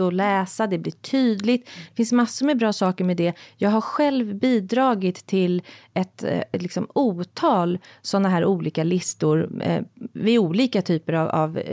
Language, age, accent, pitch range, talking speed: English, 30-49, Swedish, 170-230 Hz, 165 wpm